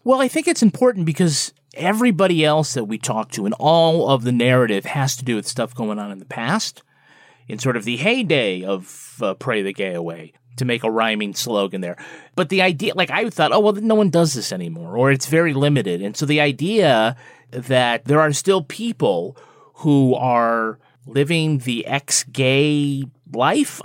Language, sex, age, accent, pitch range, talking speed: English, male, 30-49, American, 120-180 Hz, 190 wpm